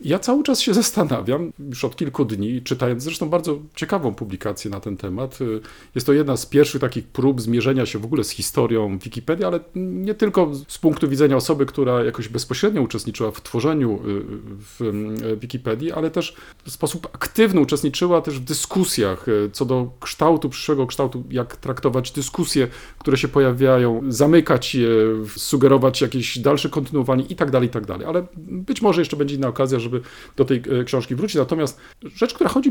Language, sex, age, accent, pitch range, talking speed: Polish, male, 40-59, native, 120-160 Hz, 175 wpm